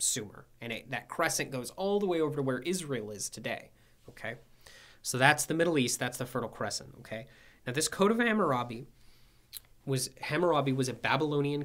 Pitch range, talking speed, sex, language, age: 125-175 Hz, 185 wpm, male, English, 20-39